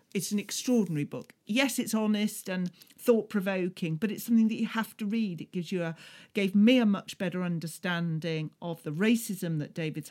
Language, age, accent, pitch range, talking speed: English, 40-59, British, 160-215 Hz, 195 wpm